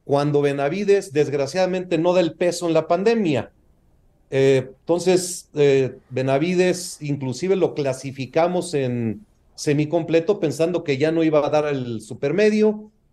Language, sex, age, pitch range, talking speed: Spanish, male, 40-59, 135-180 Hz, 130 wpm